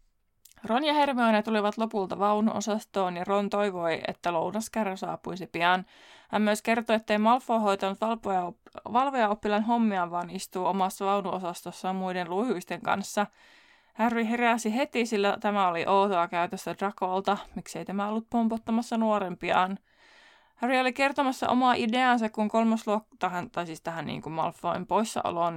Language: Finnish